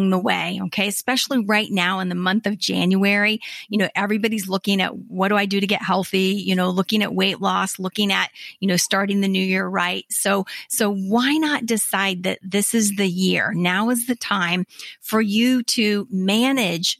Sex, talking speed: female, 200 wpm